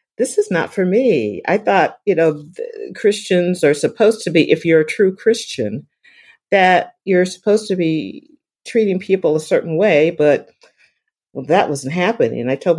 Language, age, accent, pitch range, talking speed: English, 50-69, American, 145-195 Hz, 175 wpm